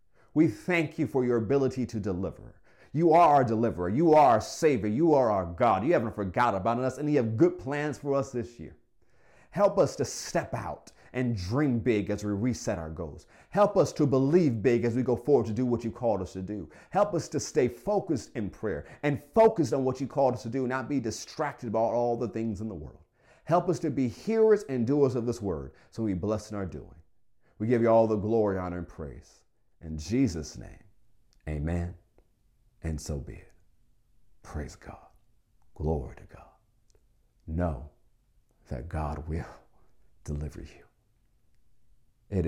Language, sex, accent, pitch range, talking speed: English, male, American, 90-130 Hz, 190 wpm